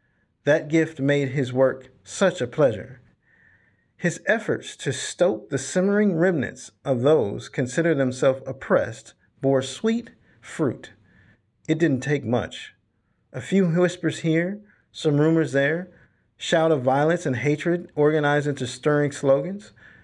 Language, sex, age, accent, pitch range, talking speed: English, male, 50-69, American, 130-175 Hz, 130 wpm